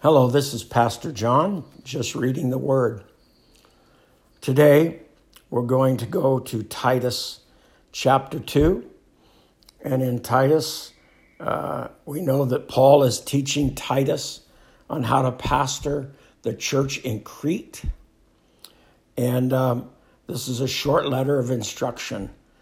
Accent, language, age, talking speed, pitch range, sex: American, English, 60-79, 120 wpm, 130-160 Hz, male